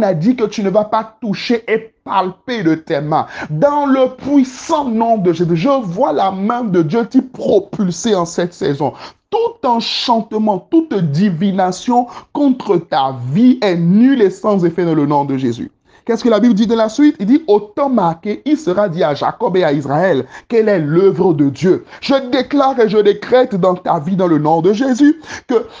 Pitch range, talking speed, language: 175-230 Hz, 205 wpm, French